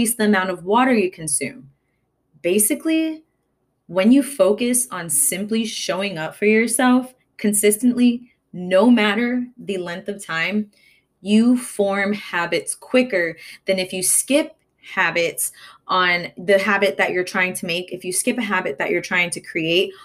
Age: 20-39